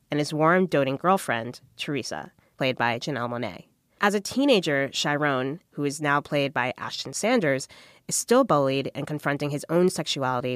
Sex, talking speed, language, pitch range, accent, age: female, 165 wpm, English, 135-180 Hz, American, 20-39